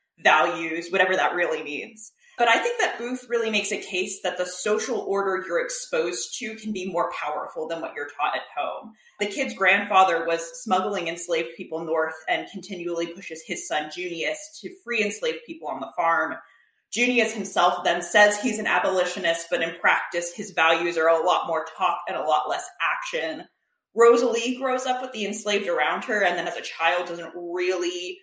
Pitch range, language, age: 170-215 Hz, English, 20-39